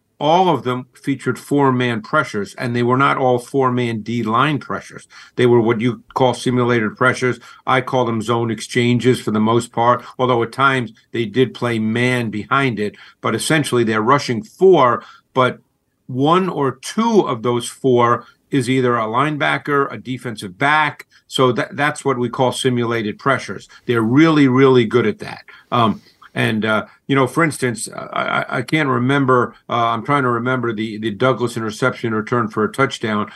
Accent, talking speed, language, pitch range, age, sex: American, 175 wpm, English, 115-135 Hz, 50-69, male